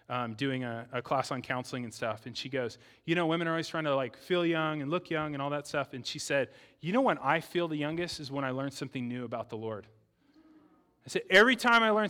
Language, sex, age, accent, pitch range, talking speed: English, male, 30-49, American, 150-220 Hz, 270 wpm